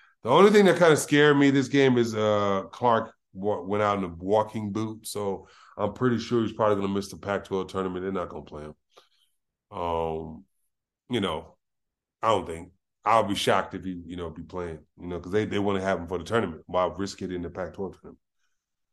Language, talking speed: English, 230 wpm